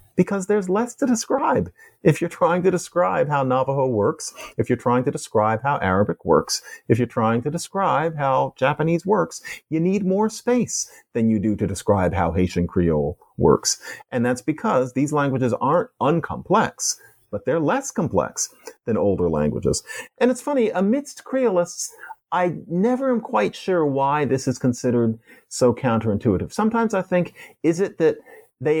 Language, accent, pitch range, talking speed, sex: English, American, 105-170 Hz, 165 wpm, male